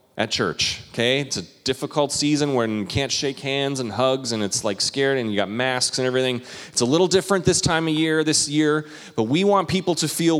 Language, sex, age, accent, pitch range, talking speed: English, male, 30-49, American, 115-155 Hz, 230 wpm